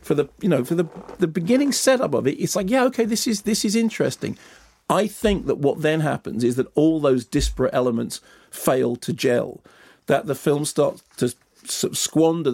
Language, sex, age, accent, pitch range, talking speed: English, male, 40-59, British, 135-170 Hz, 195 wpm